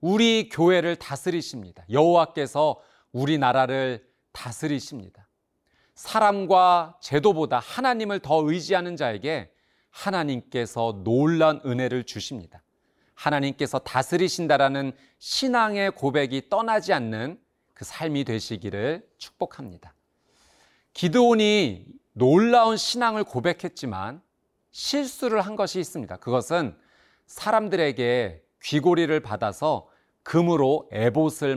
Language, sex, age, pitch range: Korean, male, 30-49, 125-180 Hz